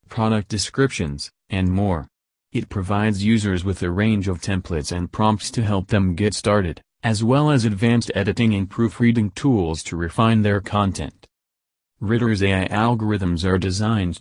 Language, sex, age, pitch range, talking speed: English, male, 40-59, 90-110 Hz, 150 wpm